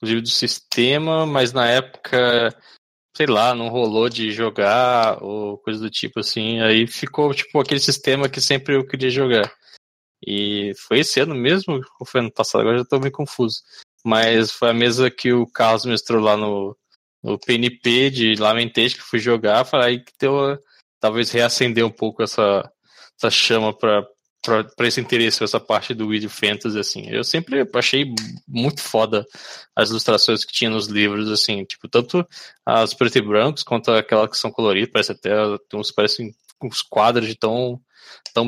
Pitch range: 110-130 Hz